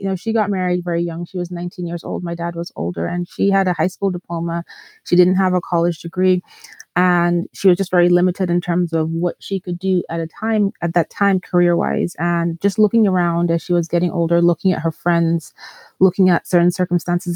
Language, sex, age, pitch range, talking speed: English, female, 30-49, 165-180 Hz, 225 wpm